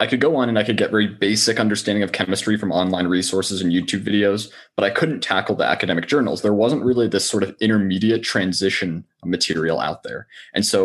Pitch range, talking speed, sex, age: 95-120 Hz, 215 wpm, male, 20-39